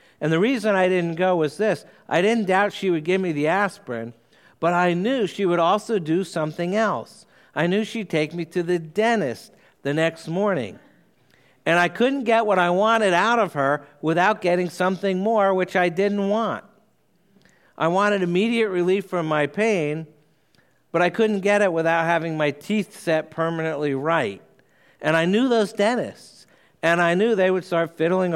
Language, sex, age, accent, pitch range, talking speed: English, male, 60-79, American, 160-200 Hz, 180 wpm